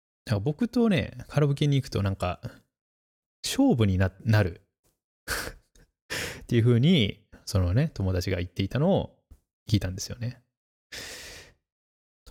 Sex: male